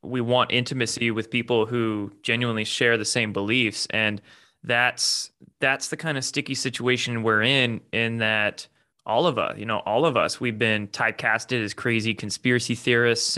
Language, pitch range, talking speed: English, 110-135 Hz, 170 wpm